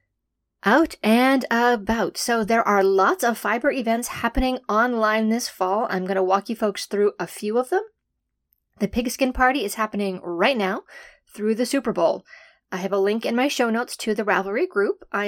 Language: English